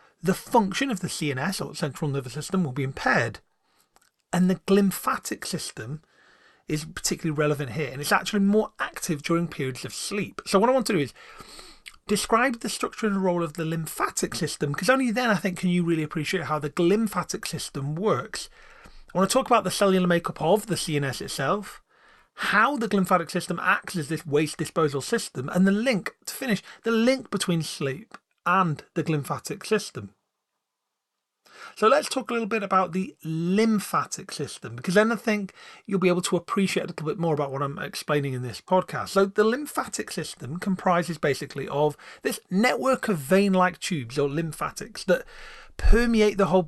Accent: British